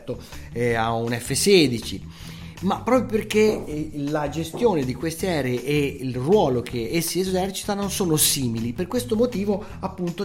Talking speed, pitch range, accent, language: 135 wpm, 115-160 Hz, native, Italian